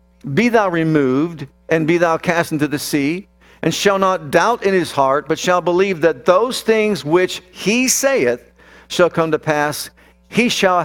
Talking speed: 175 wpm